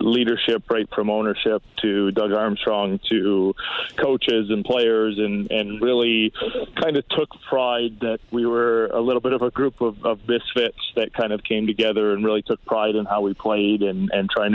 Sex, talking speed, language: male, 190 wpm, English